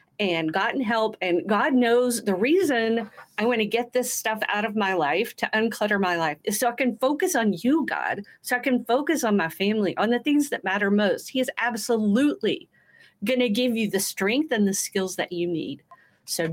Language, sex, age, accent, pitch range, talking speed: English, female, 40-59, American, 195-255 Hz, 215 wpm